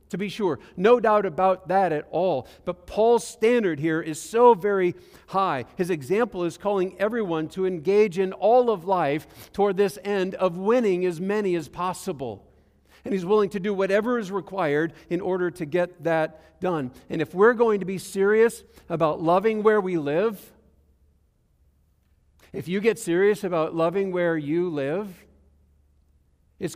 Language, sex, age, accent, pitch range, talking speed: English, male, 50-69, American, 125-195 Hz, 165 wpm